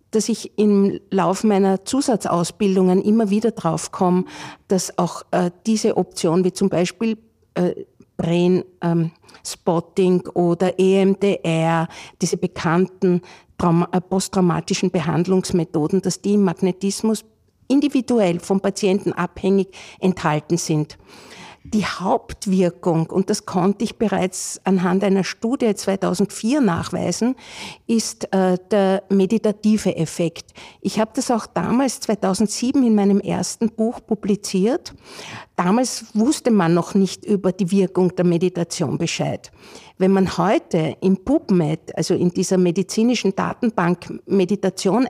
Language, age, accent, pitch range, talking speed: German, 50-69, Austrian, 180-210 Hz, 120 wpm